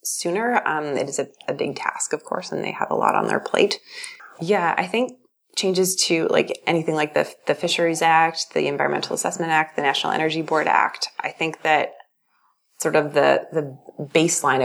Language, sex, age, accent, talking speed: English, female, 20-39, American, 195 wpm